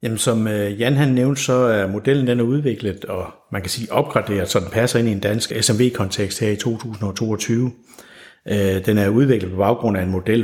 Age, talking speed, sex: 60-79, 200 wpm, male